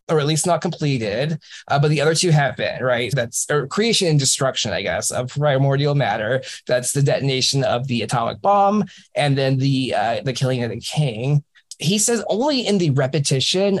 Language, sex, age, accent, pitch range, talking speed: English, male, 20-39, American, 130-175 Hz, 195 wpm